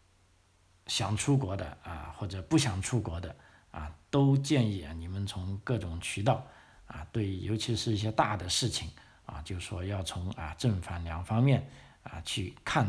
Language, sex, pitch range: Chinese, male, 95-115 Hz